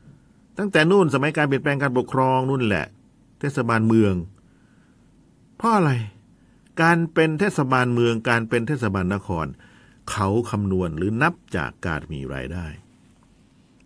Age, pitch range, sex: 60-79, 85-140 Hz, male